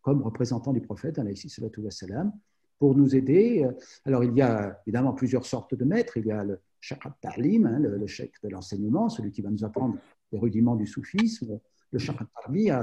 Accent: French